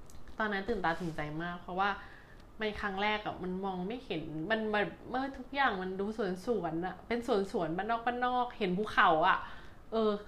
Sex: female